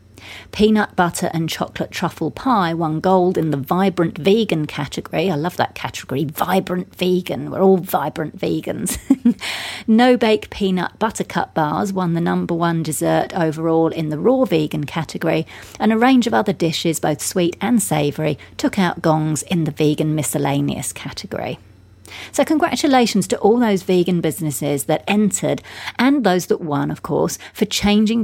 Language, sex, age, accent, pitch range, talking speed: English, female, 40-59, British, 150-205 Hz, 155 wpm